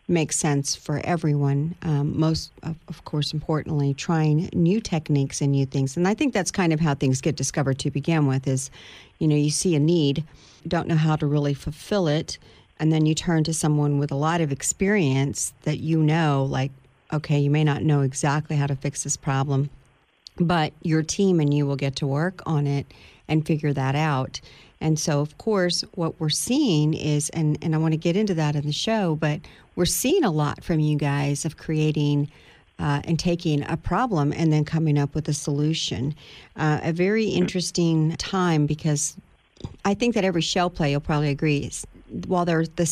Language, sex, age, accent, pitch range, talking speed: English, female, 40-59, American, 145-165 Hz, 200 wpm